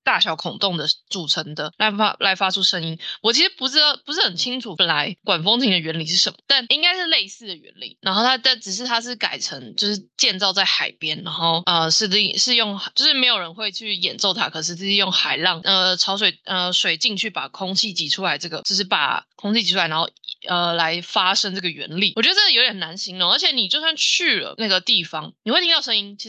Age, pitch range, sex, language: 20-39, 175-230 Hz, female, Chinese